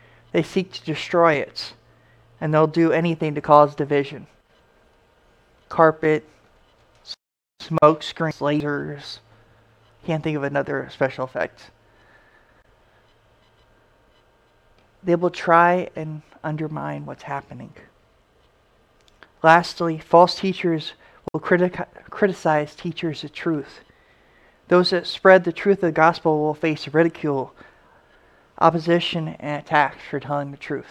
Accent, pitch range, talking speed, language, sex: American, 145-170 Hz, 105 wpm, English, male